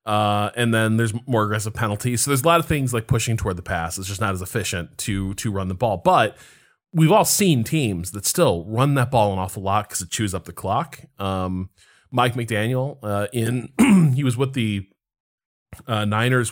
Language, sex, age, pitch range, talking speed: English, male, 20-39, 100-135 Hz, 210 wpm